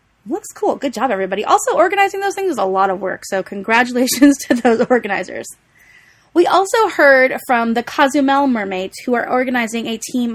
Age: 20-39